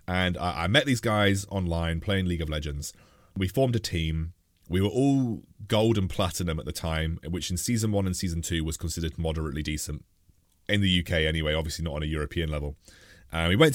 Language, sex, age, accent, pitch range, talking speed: English, male, 30-49, British, 85-115 Hz, 205 wpm